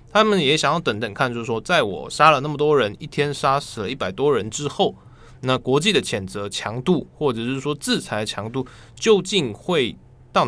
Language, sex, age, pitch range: Chinese, male, 20-39, 115-155 Hz